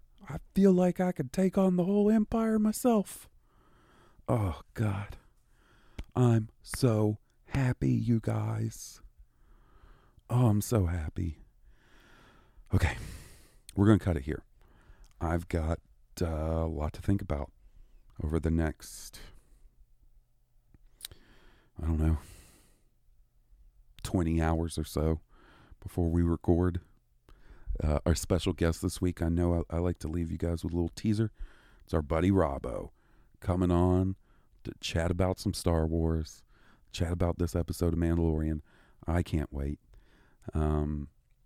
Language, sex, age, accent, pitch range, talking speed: English, male, 40-59, American, 80-100 Hz, 130 wpm